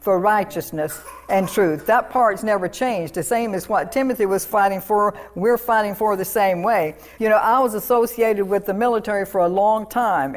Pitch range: 190-225 Hz